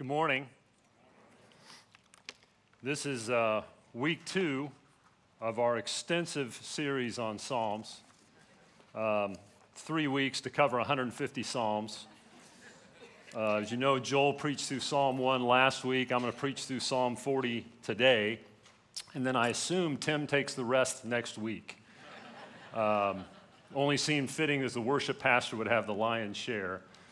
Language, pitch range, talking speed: English, 110-130 Hz, 135 wpm